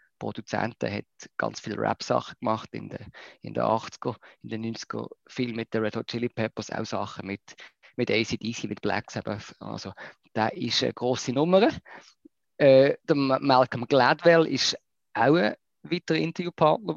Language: German